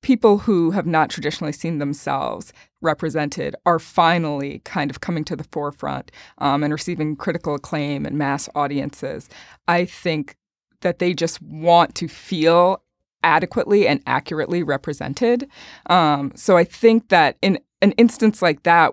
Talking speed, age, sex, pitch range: 145 wpm, 20-39, female, 145-190 Hz